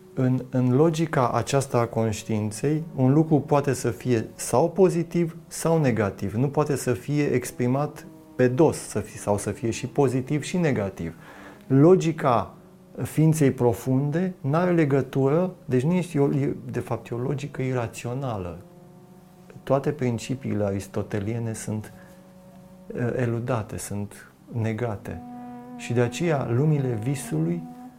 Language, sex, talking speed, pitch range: Romanian, male, 120 wpm, 115-155 Hz